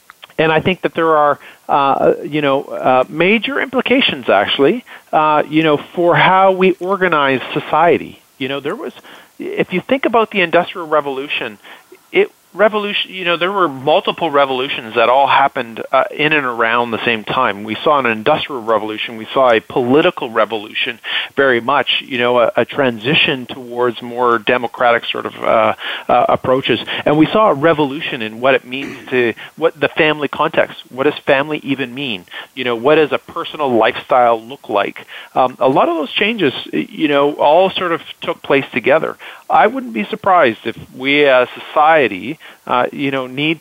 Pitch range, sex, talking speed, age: 120-165 Hz, male, 180 wpm, 40-59